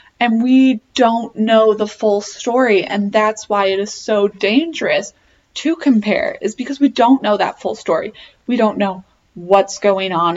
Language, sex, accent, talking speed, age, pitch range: English, female, American, 175 wpm, 20-39, 195-235 Hz